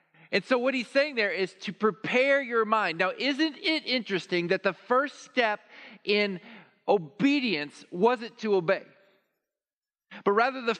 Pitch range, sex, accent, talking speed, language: 165-225 Hz, male, American, 150 wpm, English